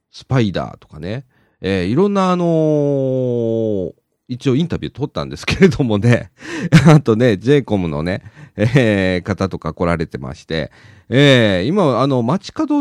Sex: male